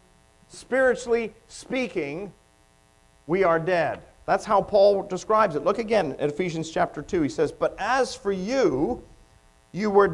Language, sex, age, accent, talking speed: English, male, 50-69, American, 140 wpm